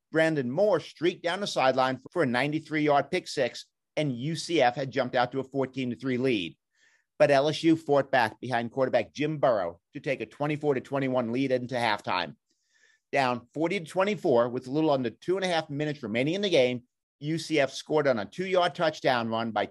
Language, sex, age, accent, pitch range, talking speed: English, male, 50-69, American, 120-155 Hz, 175 wpm